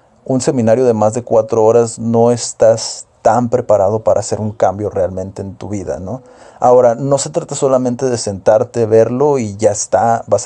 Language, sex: Spanish, male